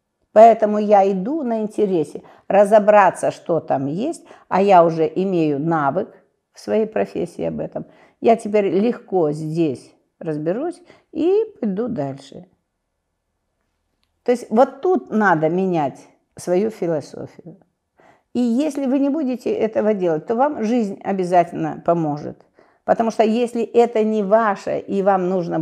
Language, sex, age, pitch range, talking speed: Russian, female, 50-69, 160-225 Hz, 130 wpm